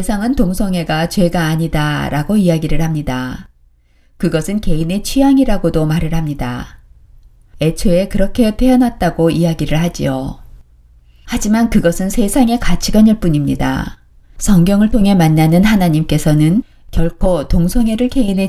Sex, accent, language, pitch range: female, native, Korean, 150-195 Hz